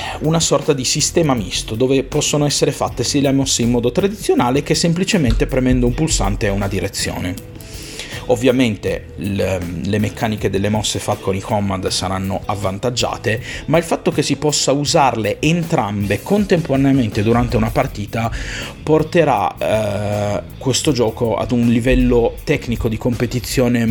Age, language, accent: 30-49, Italian, native